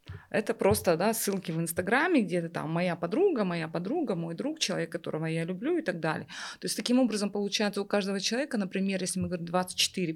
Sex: female